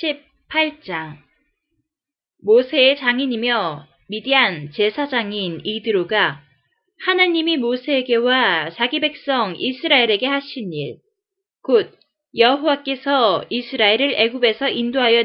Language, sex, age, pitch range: Korean, female, 20-39, 210-285 Hz